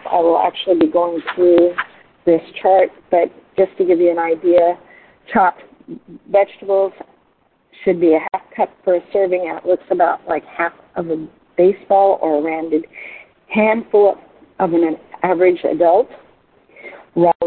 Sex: female